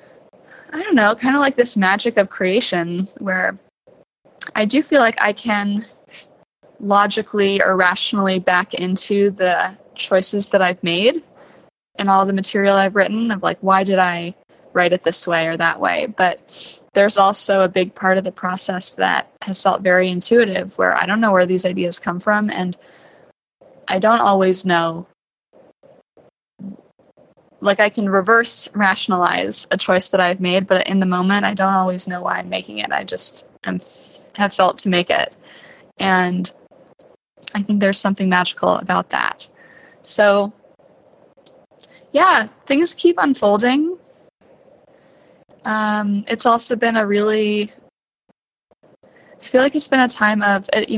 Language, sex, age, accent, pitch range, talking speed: English, female, 20-39, American, 185-210 Hz, 155 wpm